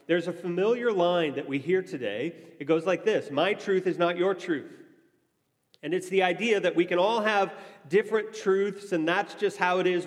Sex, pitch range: male, 160-215 Hz